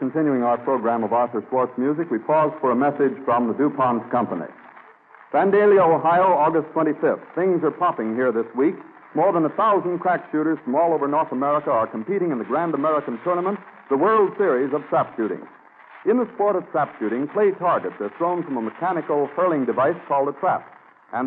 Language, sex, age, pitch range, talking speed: English, male, 60-79, 135-185 Hz, 195 wpm